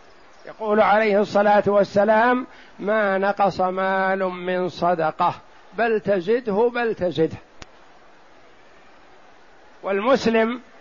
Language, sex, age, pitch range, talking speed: Arabic, male, 60-79, 190-225 Hz, 80 wpm